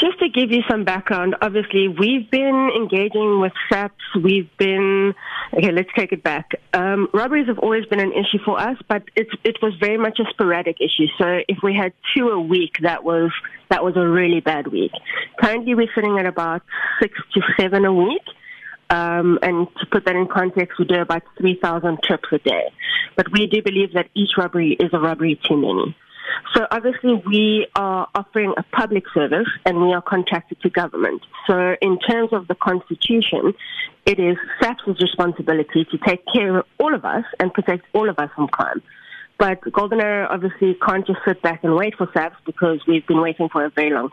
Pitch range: 175-210 Hz